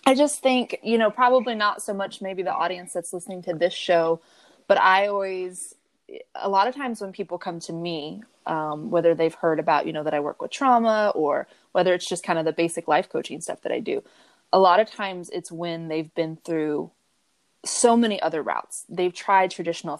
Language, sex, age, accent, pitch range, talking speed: English, female, 20-39, American, 175-220 Hz, 215 wpm